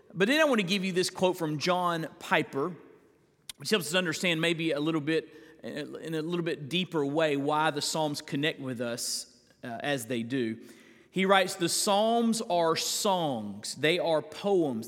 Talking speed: 180 wpm